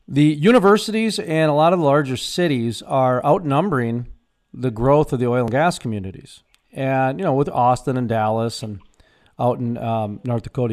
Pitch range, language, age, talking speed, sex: 125-165 Hz, English, 40-59, 180 wpm, male